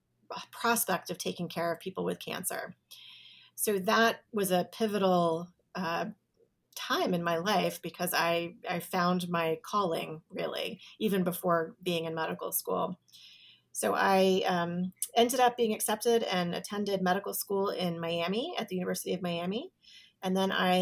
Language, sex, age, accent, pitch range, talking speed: English, female, 30-49, American, 175-205 Hz, 150 wpm